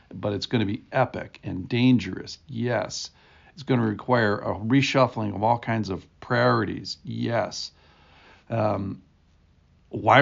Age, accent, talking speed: 50-69, American, 135 wpm